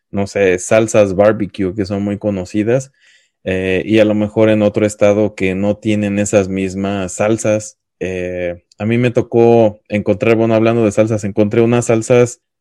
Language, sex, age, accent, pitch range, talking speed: Spanish, male, 20-39, Mexican, 100-115 Hz, 165 wpm